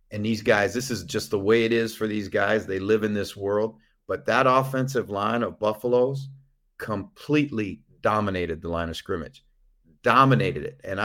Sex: male